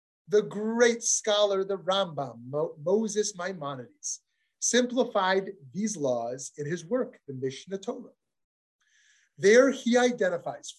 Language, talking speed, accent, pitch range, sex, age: English, 100 wpm, American, 160-245 Hz, male, 30-49